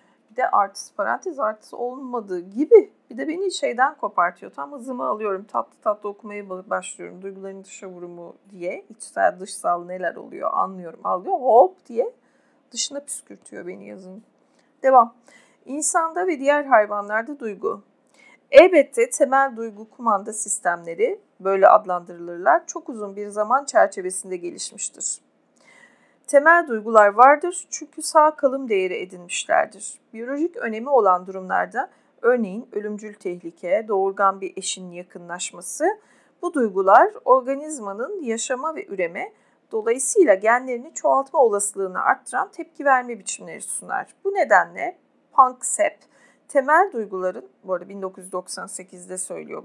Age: 40-59